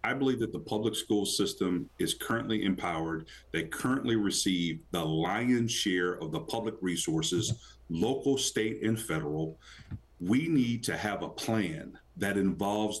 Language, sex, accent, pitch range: English, male, American, 100-135 Hz